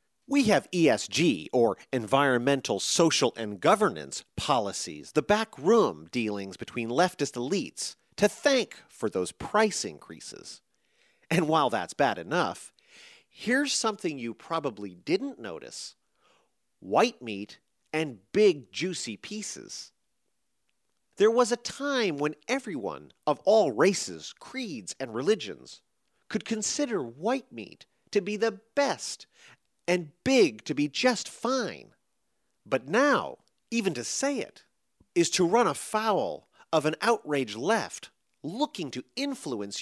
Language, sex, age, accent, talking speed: English, male, 40-59, American, 120 wpm